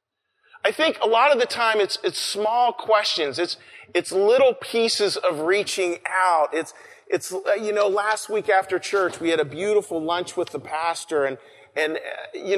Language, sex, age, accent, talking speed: English, male, 40-59, American, 175 wpm